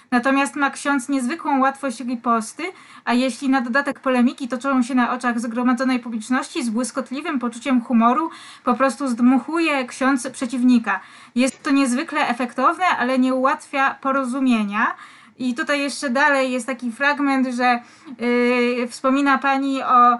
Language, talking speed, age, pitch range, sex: Polish, 135 wpm, 20-39, 240-270 Hz, female